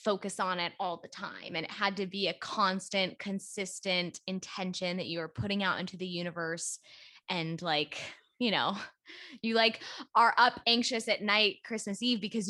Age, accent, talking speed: 10-29, American, 180 wpm